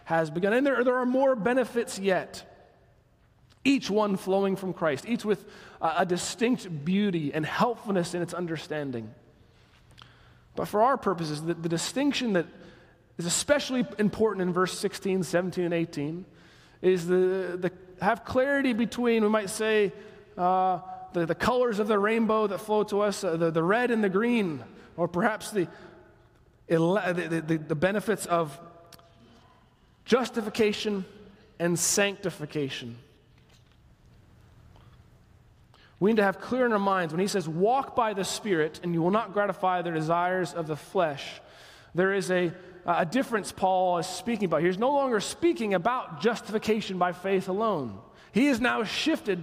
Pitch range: 170-220 Hz